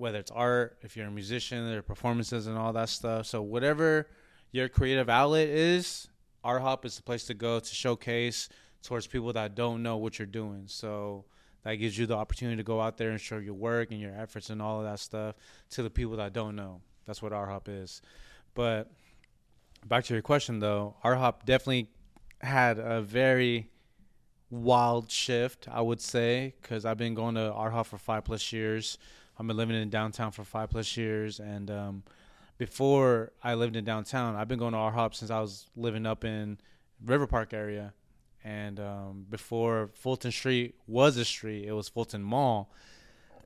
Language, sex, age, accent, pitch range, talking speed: English, male, 20-39, American, 110-125 Hz, 185 wpm